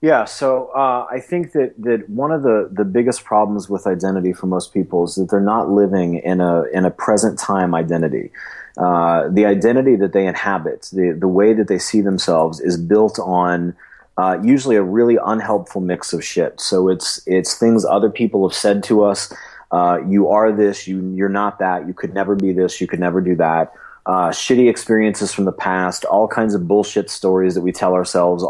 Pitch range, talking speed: 90-105 Hz, 205 wpm